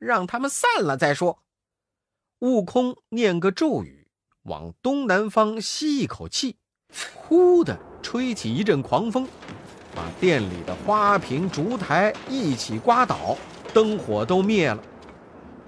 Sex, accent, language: male, native, Chinese